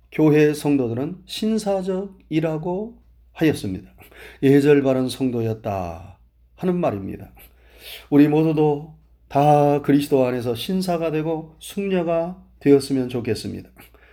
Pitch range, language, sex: 95-145 Hz, Korean, male